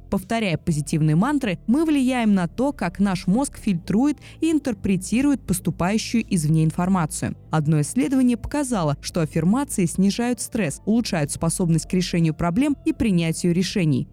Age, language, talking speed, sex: 20-39, Russian, 130 wpm, female